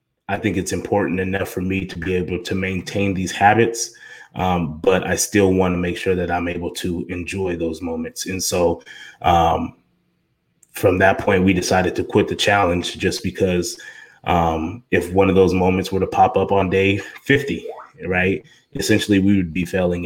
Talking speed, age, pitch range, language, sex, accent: 185 wpm, 20-39, 90-100 Hz, English, male, American